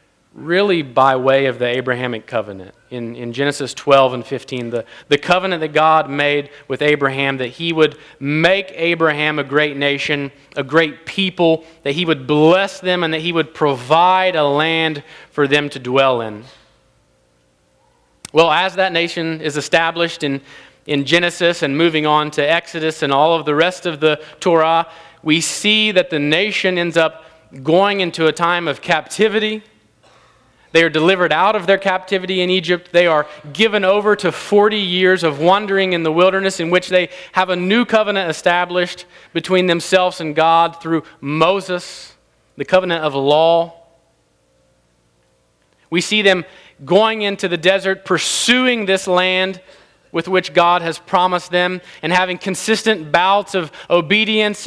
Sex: male